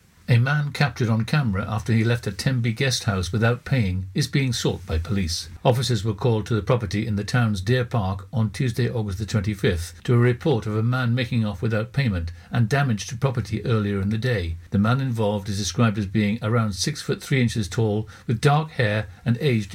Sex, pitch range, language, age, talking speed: male, 105-130 Hz, English, 60-79, 215 wpm